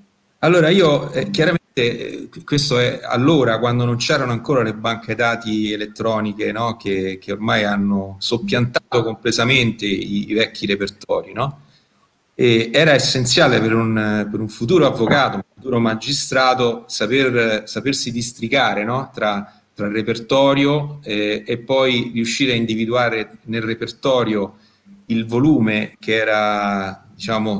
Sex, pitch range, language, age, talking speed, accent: male, 105-130 Hz, Italian, 40-59, 135 wpm, native